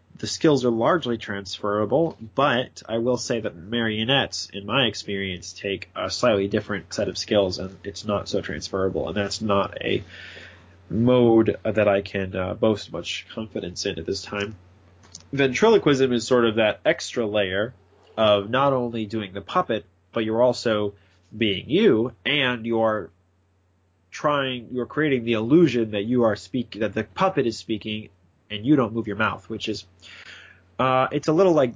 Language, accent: English, American